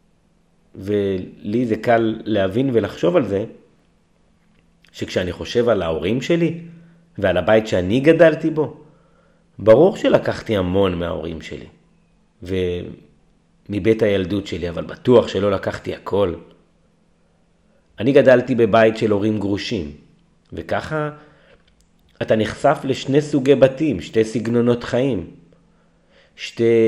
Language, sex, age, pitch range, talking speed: Hebrew, male, 30-49, 105-150 Hz, 105 wpm